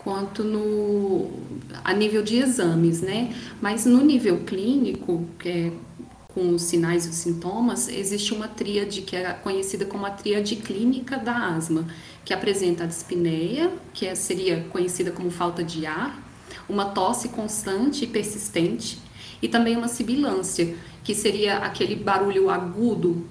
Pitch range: 180-210 Hz